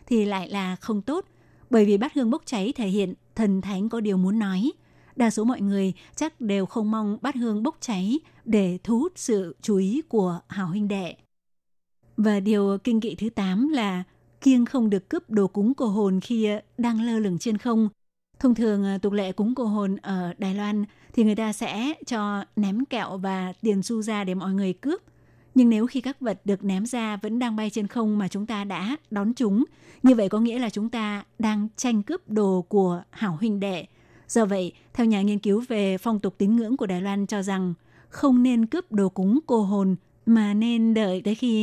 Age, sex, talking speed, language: 20-39, female, 215 wpm, Vietnamese